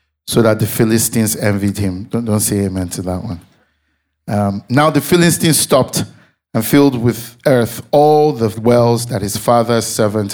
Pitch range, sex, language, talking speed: 100-120 Hz, male, English, 170 wpm